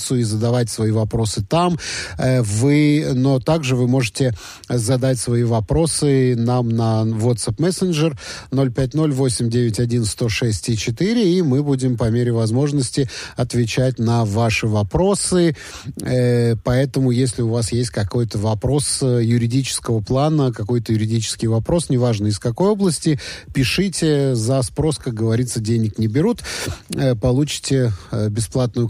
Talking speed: 110 wpm